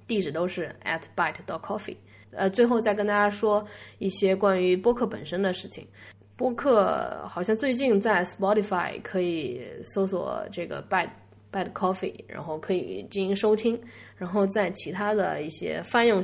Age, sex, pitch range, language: 20-39, female, 155-205 Hz, Chinese